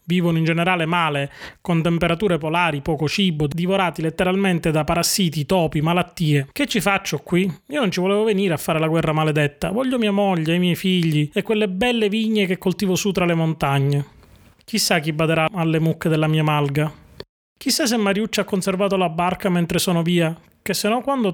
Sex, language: male, Italian